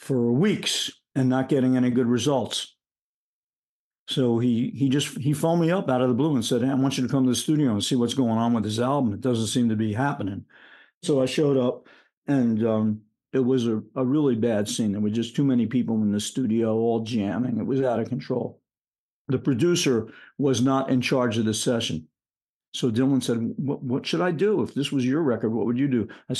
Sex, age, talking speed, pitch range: male, 50-69, 230 wpm, 110-135 Hz